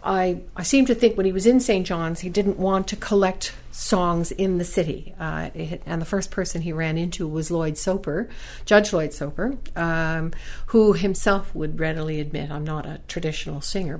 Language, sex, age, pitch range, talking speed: English, female, 60-79, 160-190 Hz, 195 wpm